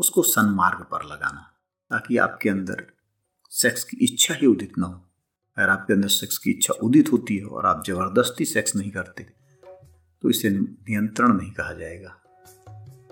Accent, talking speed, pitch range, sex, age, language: Indian, 165 wpm, 100-130 Hz, male, 50-69, English